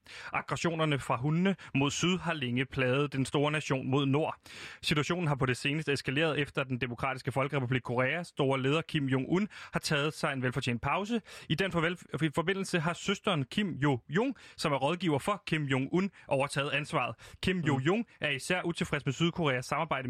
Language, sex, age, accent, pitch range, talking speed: Danish, male, 30-49, native, 135-165 Hz, 175 wpm